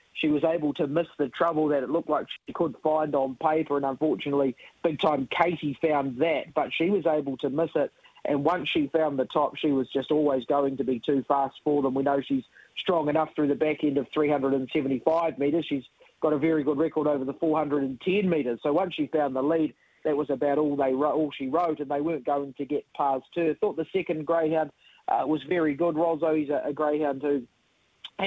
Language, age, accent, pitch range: English, 40-59, Australian, 145-165 Hz